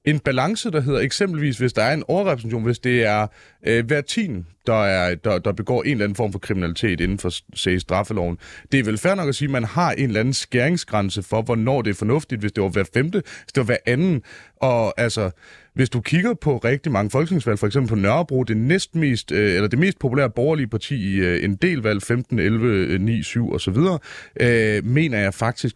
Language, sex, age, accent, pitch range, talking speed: Danish, male, 30-49, native, 105-150 Hz, 205 wpm